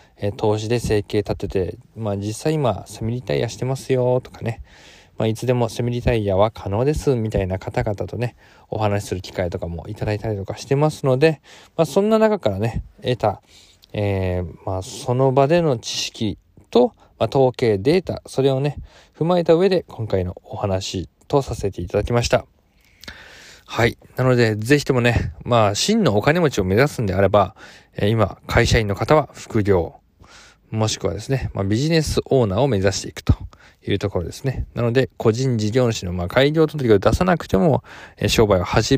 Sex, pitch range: male, 100-135 Hz